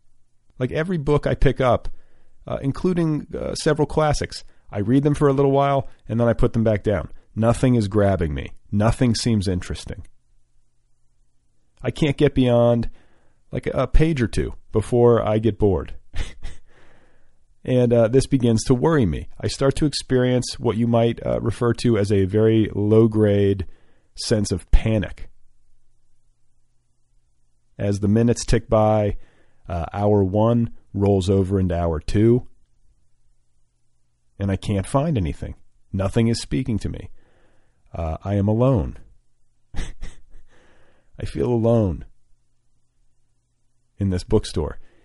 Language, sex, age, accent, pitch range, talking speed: English, male, 40-59, American, 100-125 Hz, 135 wpm